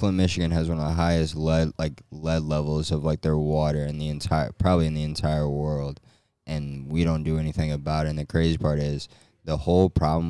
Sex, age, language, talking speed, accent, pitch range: male, 20-39, English, 215 wpm, American, 75-85 Hz